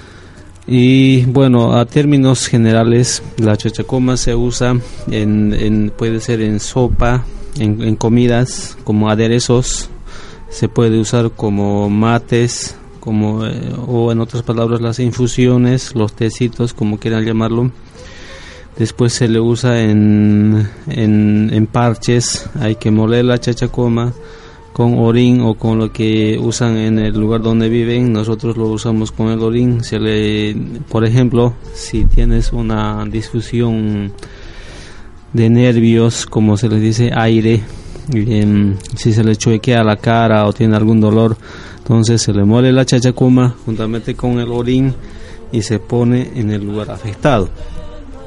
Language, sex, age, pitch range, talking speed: Spanish, male, 20-39, 105-120 Hz, 140 wpm